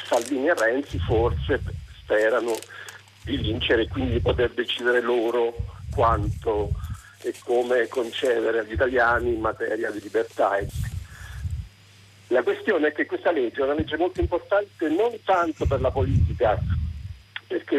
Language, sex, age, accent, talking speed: Italian, male, 50-69, native, 130 wpm